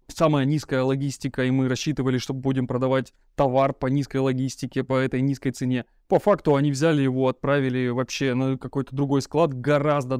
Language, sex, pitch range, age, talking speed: Russian, male, 130-145 Hz, 20-39, 170 wpm